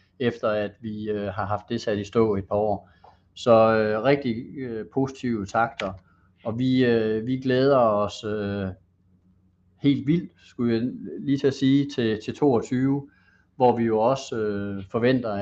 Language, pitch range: Danish, 100-120 Hz